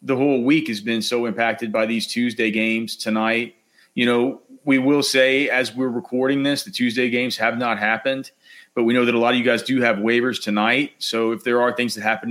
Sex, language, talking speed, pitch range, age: male, English, 230 wpm, 110-135 Hz, 30-49